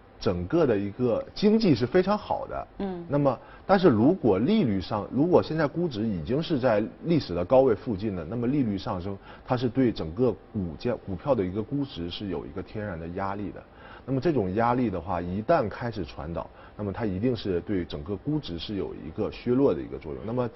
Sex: male